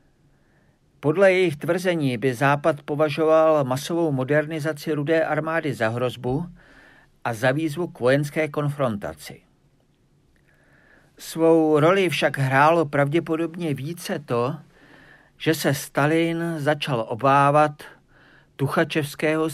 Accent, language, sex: native, Czech, male